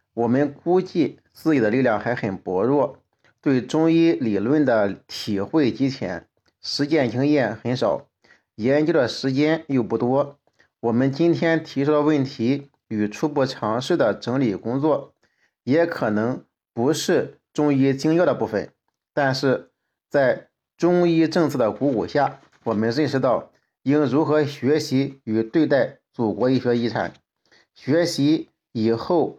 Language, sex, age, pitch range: Chinese, male, 50-69, 120-150 Hz